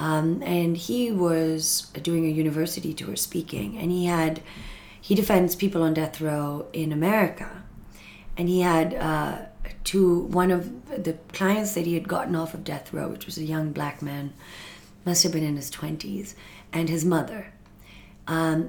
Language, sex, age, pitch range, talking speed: English, female, 30-49, 160-195 Hz, 170 wpm